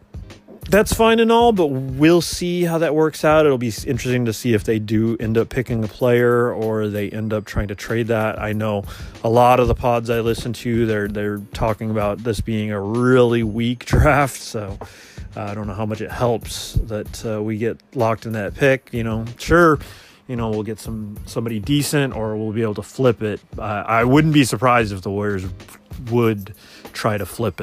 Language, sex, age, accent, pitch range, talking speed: English, male, 30-49, American, 105-125 Hz, 210 wpm